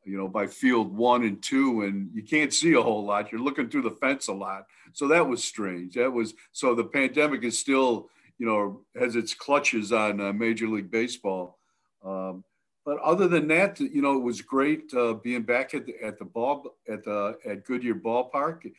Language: English